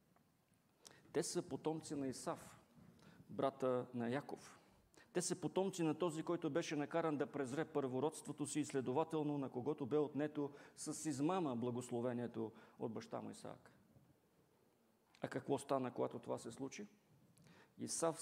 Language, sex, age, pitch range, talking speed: English, male, 40-59, 130-160 Hz, 135 wpm